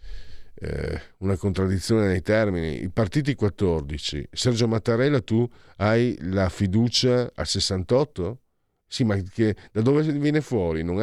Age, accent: 50-69, native